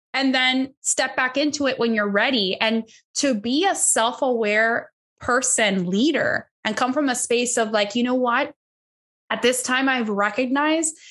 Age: 10-29